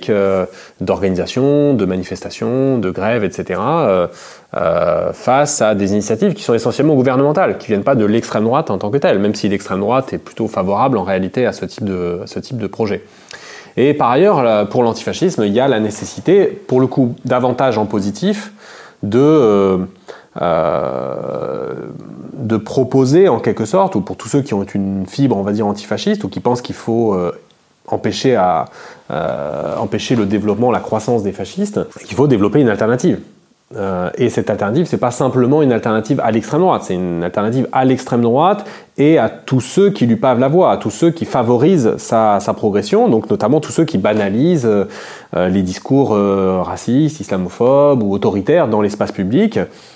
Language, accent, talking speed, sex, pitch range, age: French, French, 180 wpm, male, 105-140 Hz, 30-49